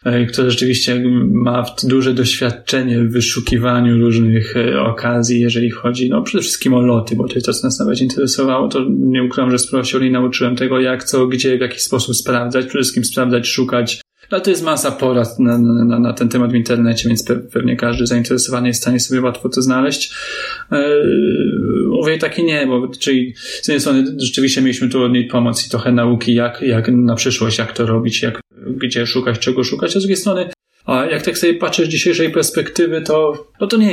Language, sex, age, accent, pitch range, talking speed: Polish, male, 10-29, native, 115-130 Hz, 200 wpm